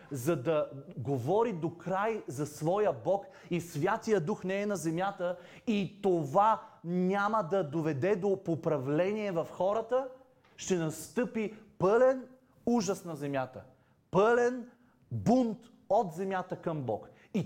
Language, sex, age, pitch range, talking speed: Bulgarian, male, 30-49, 115-170 Hz, 125 wpm